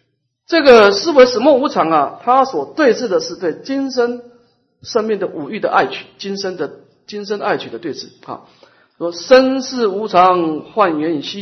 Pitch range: 135-225 Hz